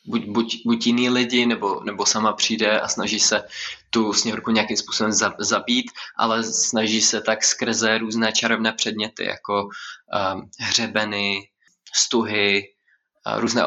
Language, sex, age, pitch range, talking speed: Czech, male, 20-39, 110-120 Hz, 130 wpm